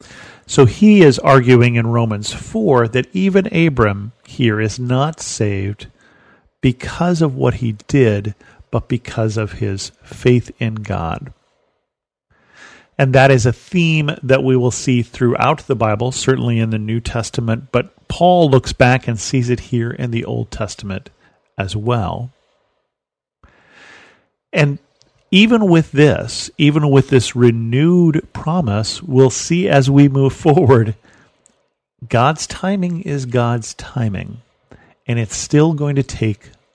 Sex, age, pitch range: male, 40-59, 110-140 Hz